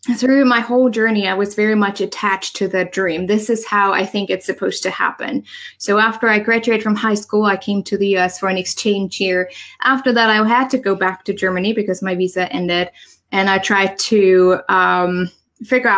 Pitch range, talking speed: 190-245 Hz, 210 wpm